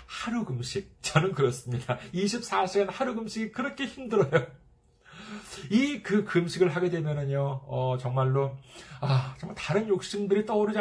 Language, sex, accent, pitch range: Korean, male, native, 135-215 Hz